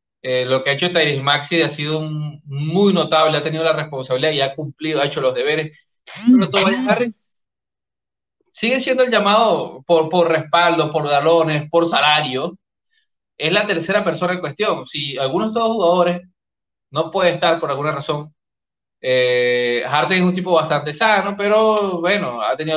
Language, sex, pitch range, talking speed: Spanish, male, 150-195 Hz, 165 wpm